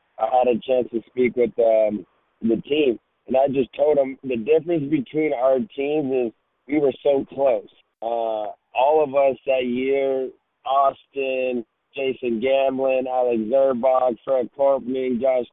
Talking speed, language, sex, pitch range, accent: 150 wpm, English, male, 125-145 Hz, American